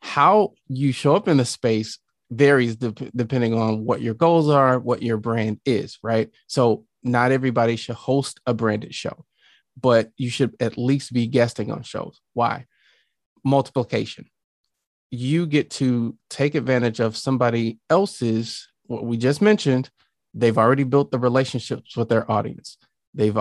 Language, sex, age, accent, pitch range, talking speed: English, male, 30-49, American, 115-140 Hz, 155 wpm